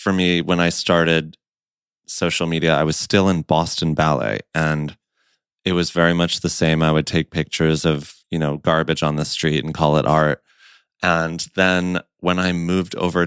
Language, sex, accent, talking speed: English, male, American, 185 wpm